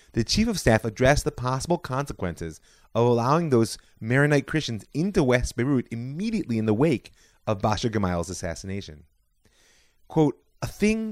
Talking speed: 145 wpm